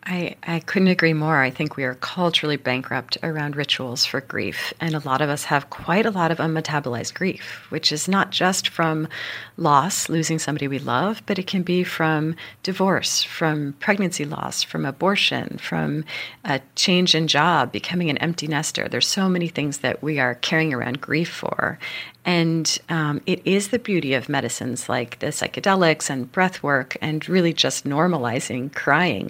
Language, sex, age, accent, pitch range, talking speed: English, female, 40-59, American, 145-180 Hz, 180 wpm